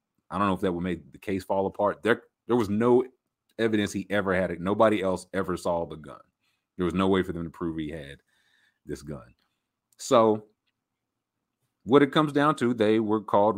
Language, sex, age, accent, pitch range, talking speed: English, male, 30-49, American, 90-115 Hz, 210 wpm